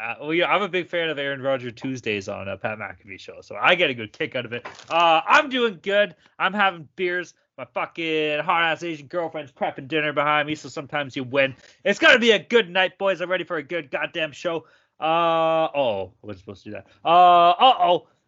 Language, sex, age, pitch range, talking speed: English, male, 20-39, 140-195 Hz, 230 wpm